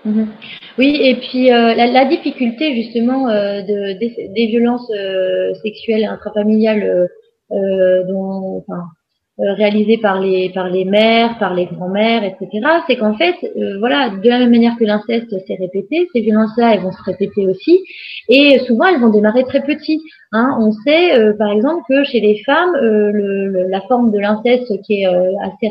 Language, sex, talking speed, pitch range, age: French, female, 180 wpm, 205-245 Hz, 20-39